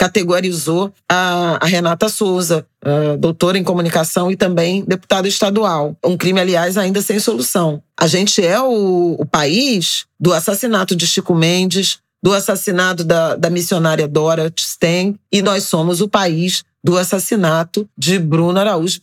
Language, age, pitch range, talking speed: Portuguese, 40-59, 170-200 Hz, 145 wpm